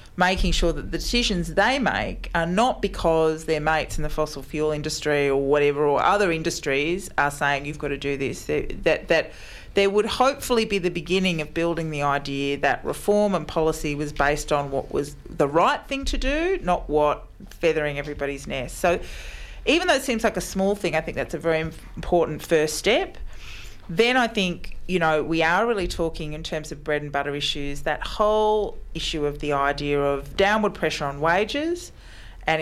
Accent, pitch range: Australian, 145-180 Hz